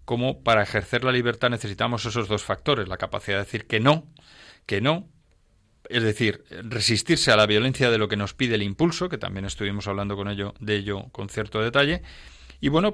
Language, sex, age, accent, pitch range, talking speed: Spanish, male, 40-59, Spanish, 100-130 Hz, 200 wpm